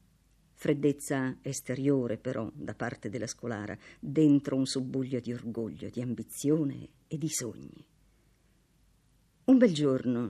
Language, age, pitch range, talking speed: Italian, 50-69, 120-175 Hz, 115 wpm